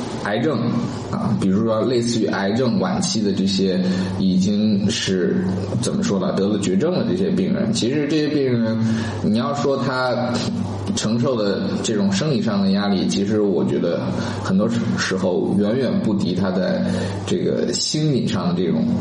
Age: 20-39